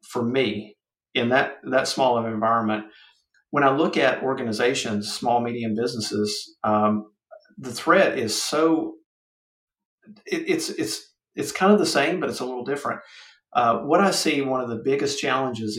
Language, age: English, 50-69